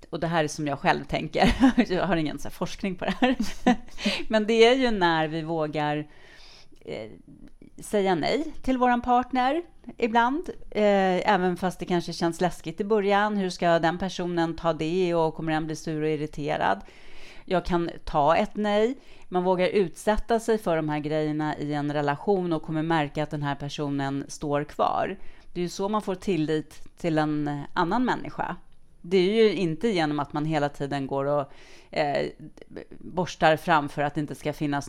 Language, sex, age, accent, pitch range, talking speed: Swedish, female, 30-49, Norwegian, 150-195 Hz, 180 wpm